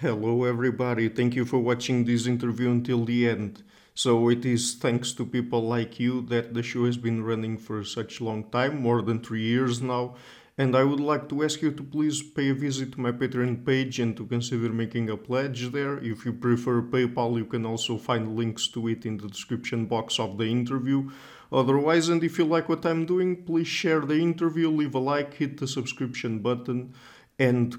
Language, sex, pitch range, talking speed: English, male, 115-135 Hz, 205 wpm